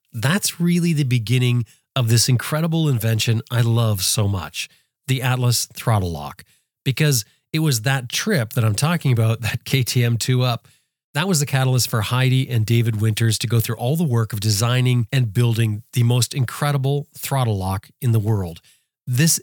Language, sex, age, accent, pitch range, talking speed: English, male, 40-59, American, 115-140 Hz, 175 wpm